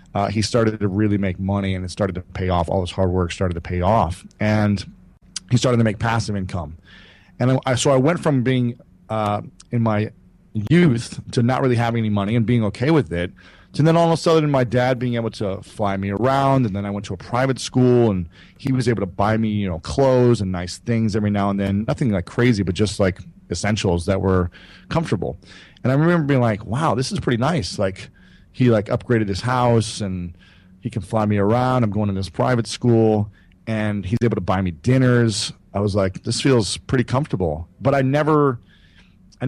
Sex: male